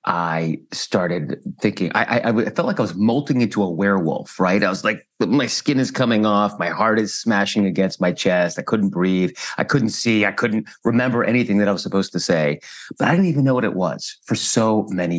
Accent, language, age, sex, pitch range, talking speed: American, English, 30-49, male, 90-125 Hz, 225 wpm